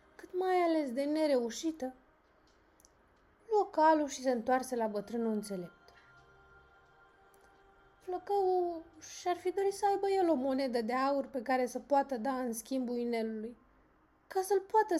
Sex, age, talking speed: female, 20-39, 140 wpm